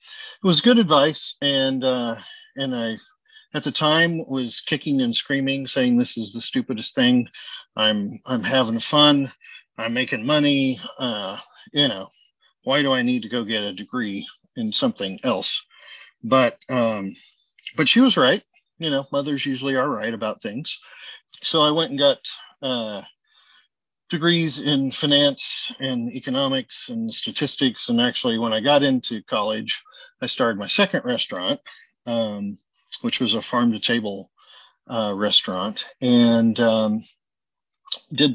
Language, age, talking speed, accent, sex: English, 40-59, 145 wpm, American, male